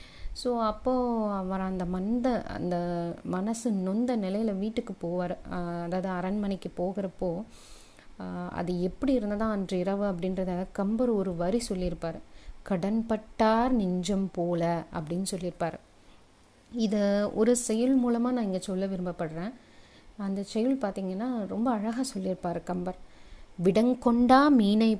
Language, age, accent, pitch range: Tamil, 30-49, native, 185-230 Hz